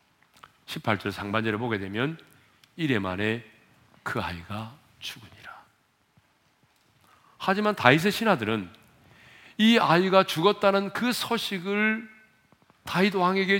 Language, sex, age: Korean, male, 40-59